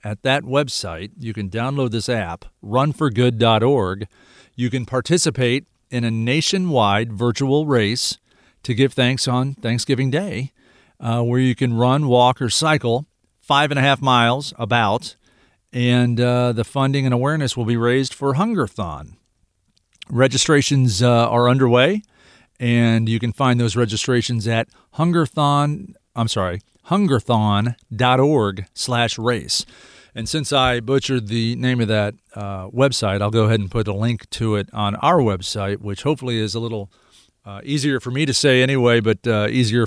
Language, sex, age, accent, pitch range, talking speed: English, male, 40-59, American, 110-135 Hz, 150 wpm